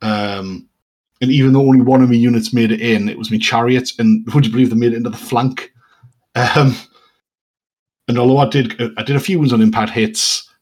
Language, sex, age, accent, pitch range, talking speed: English, male, 30-49, British, 105-130 Hz, 220 wpm